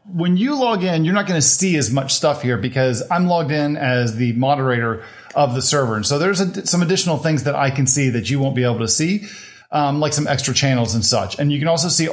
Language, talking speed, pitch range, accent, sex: English, 260 wpm, 125-155 Hz, American, male